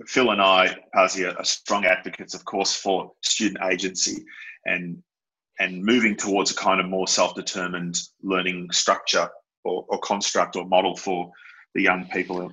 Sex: male